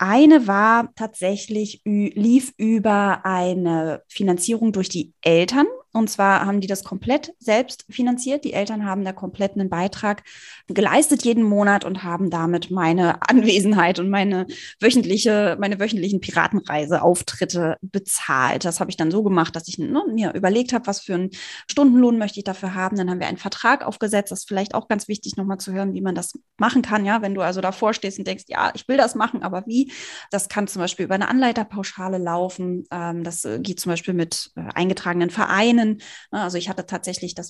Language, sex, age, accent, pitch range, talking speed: German, female, 20-39, German, 180-220 Hz, 180 wpm